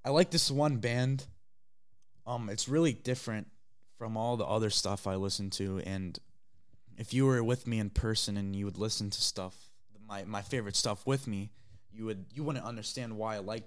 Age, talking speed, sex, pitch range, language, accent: 20-39, 200 wpm, male, 100-120 Hz, English, American